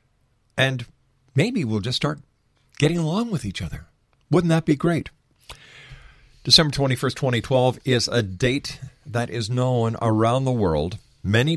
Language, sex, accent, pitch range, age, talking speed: English, male, American, 105-135 Hz, 50-69, 140 wpm